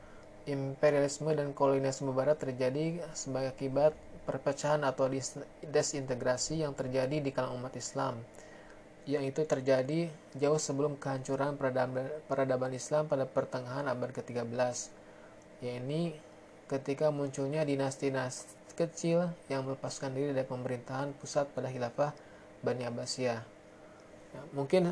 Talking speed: 110 wpm